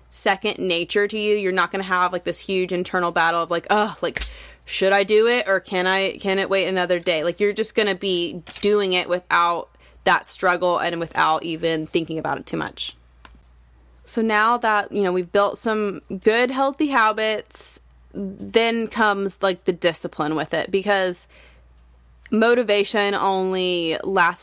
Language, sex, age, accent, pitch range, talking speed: English, female, 20-39, American, 170-200 Hz, 175 wpm